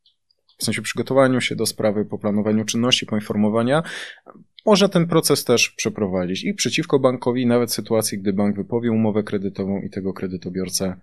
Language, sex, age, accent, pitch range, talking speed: Polish, male, 20-39, native, 100-120 Hz, 150 wpm